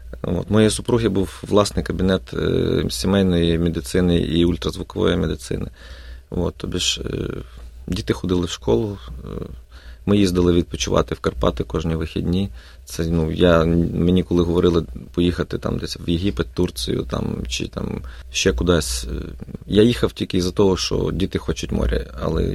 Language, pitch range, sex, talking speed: Ukrainian, 75-100 Hz, male, 145 wpm